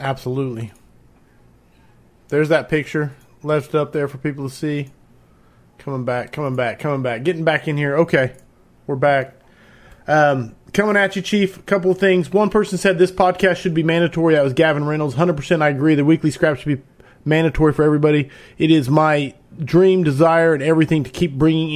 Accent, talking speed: American, 180 wpm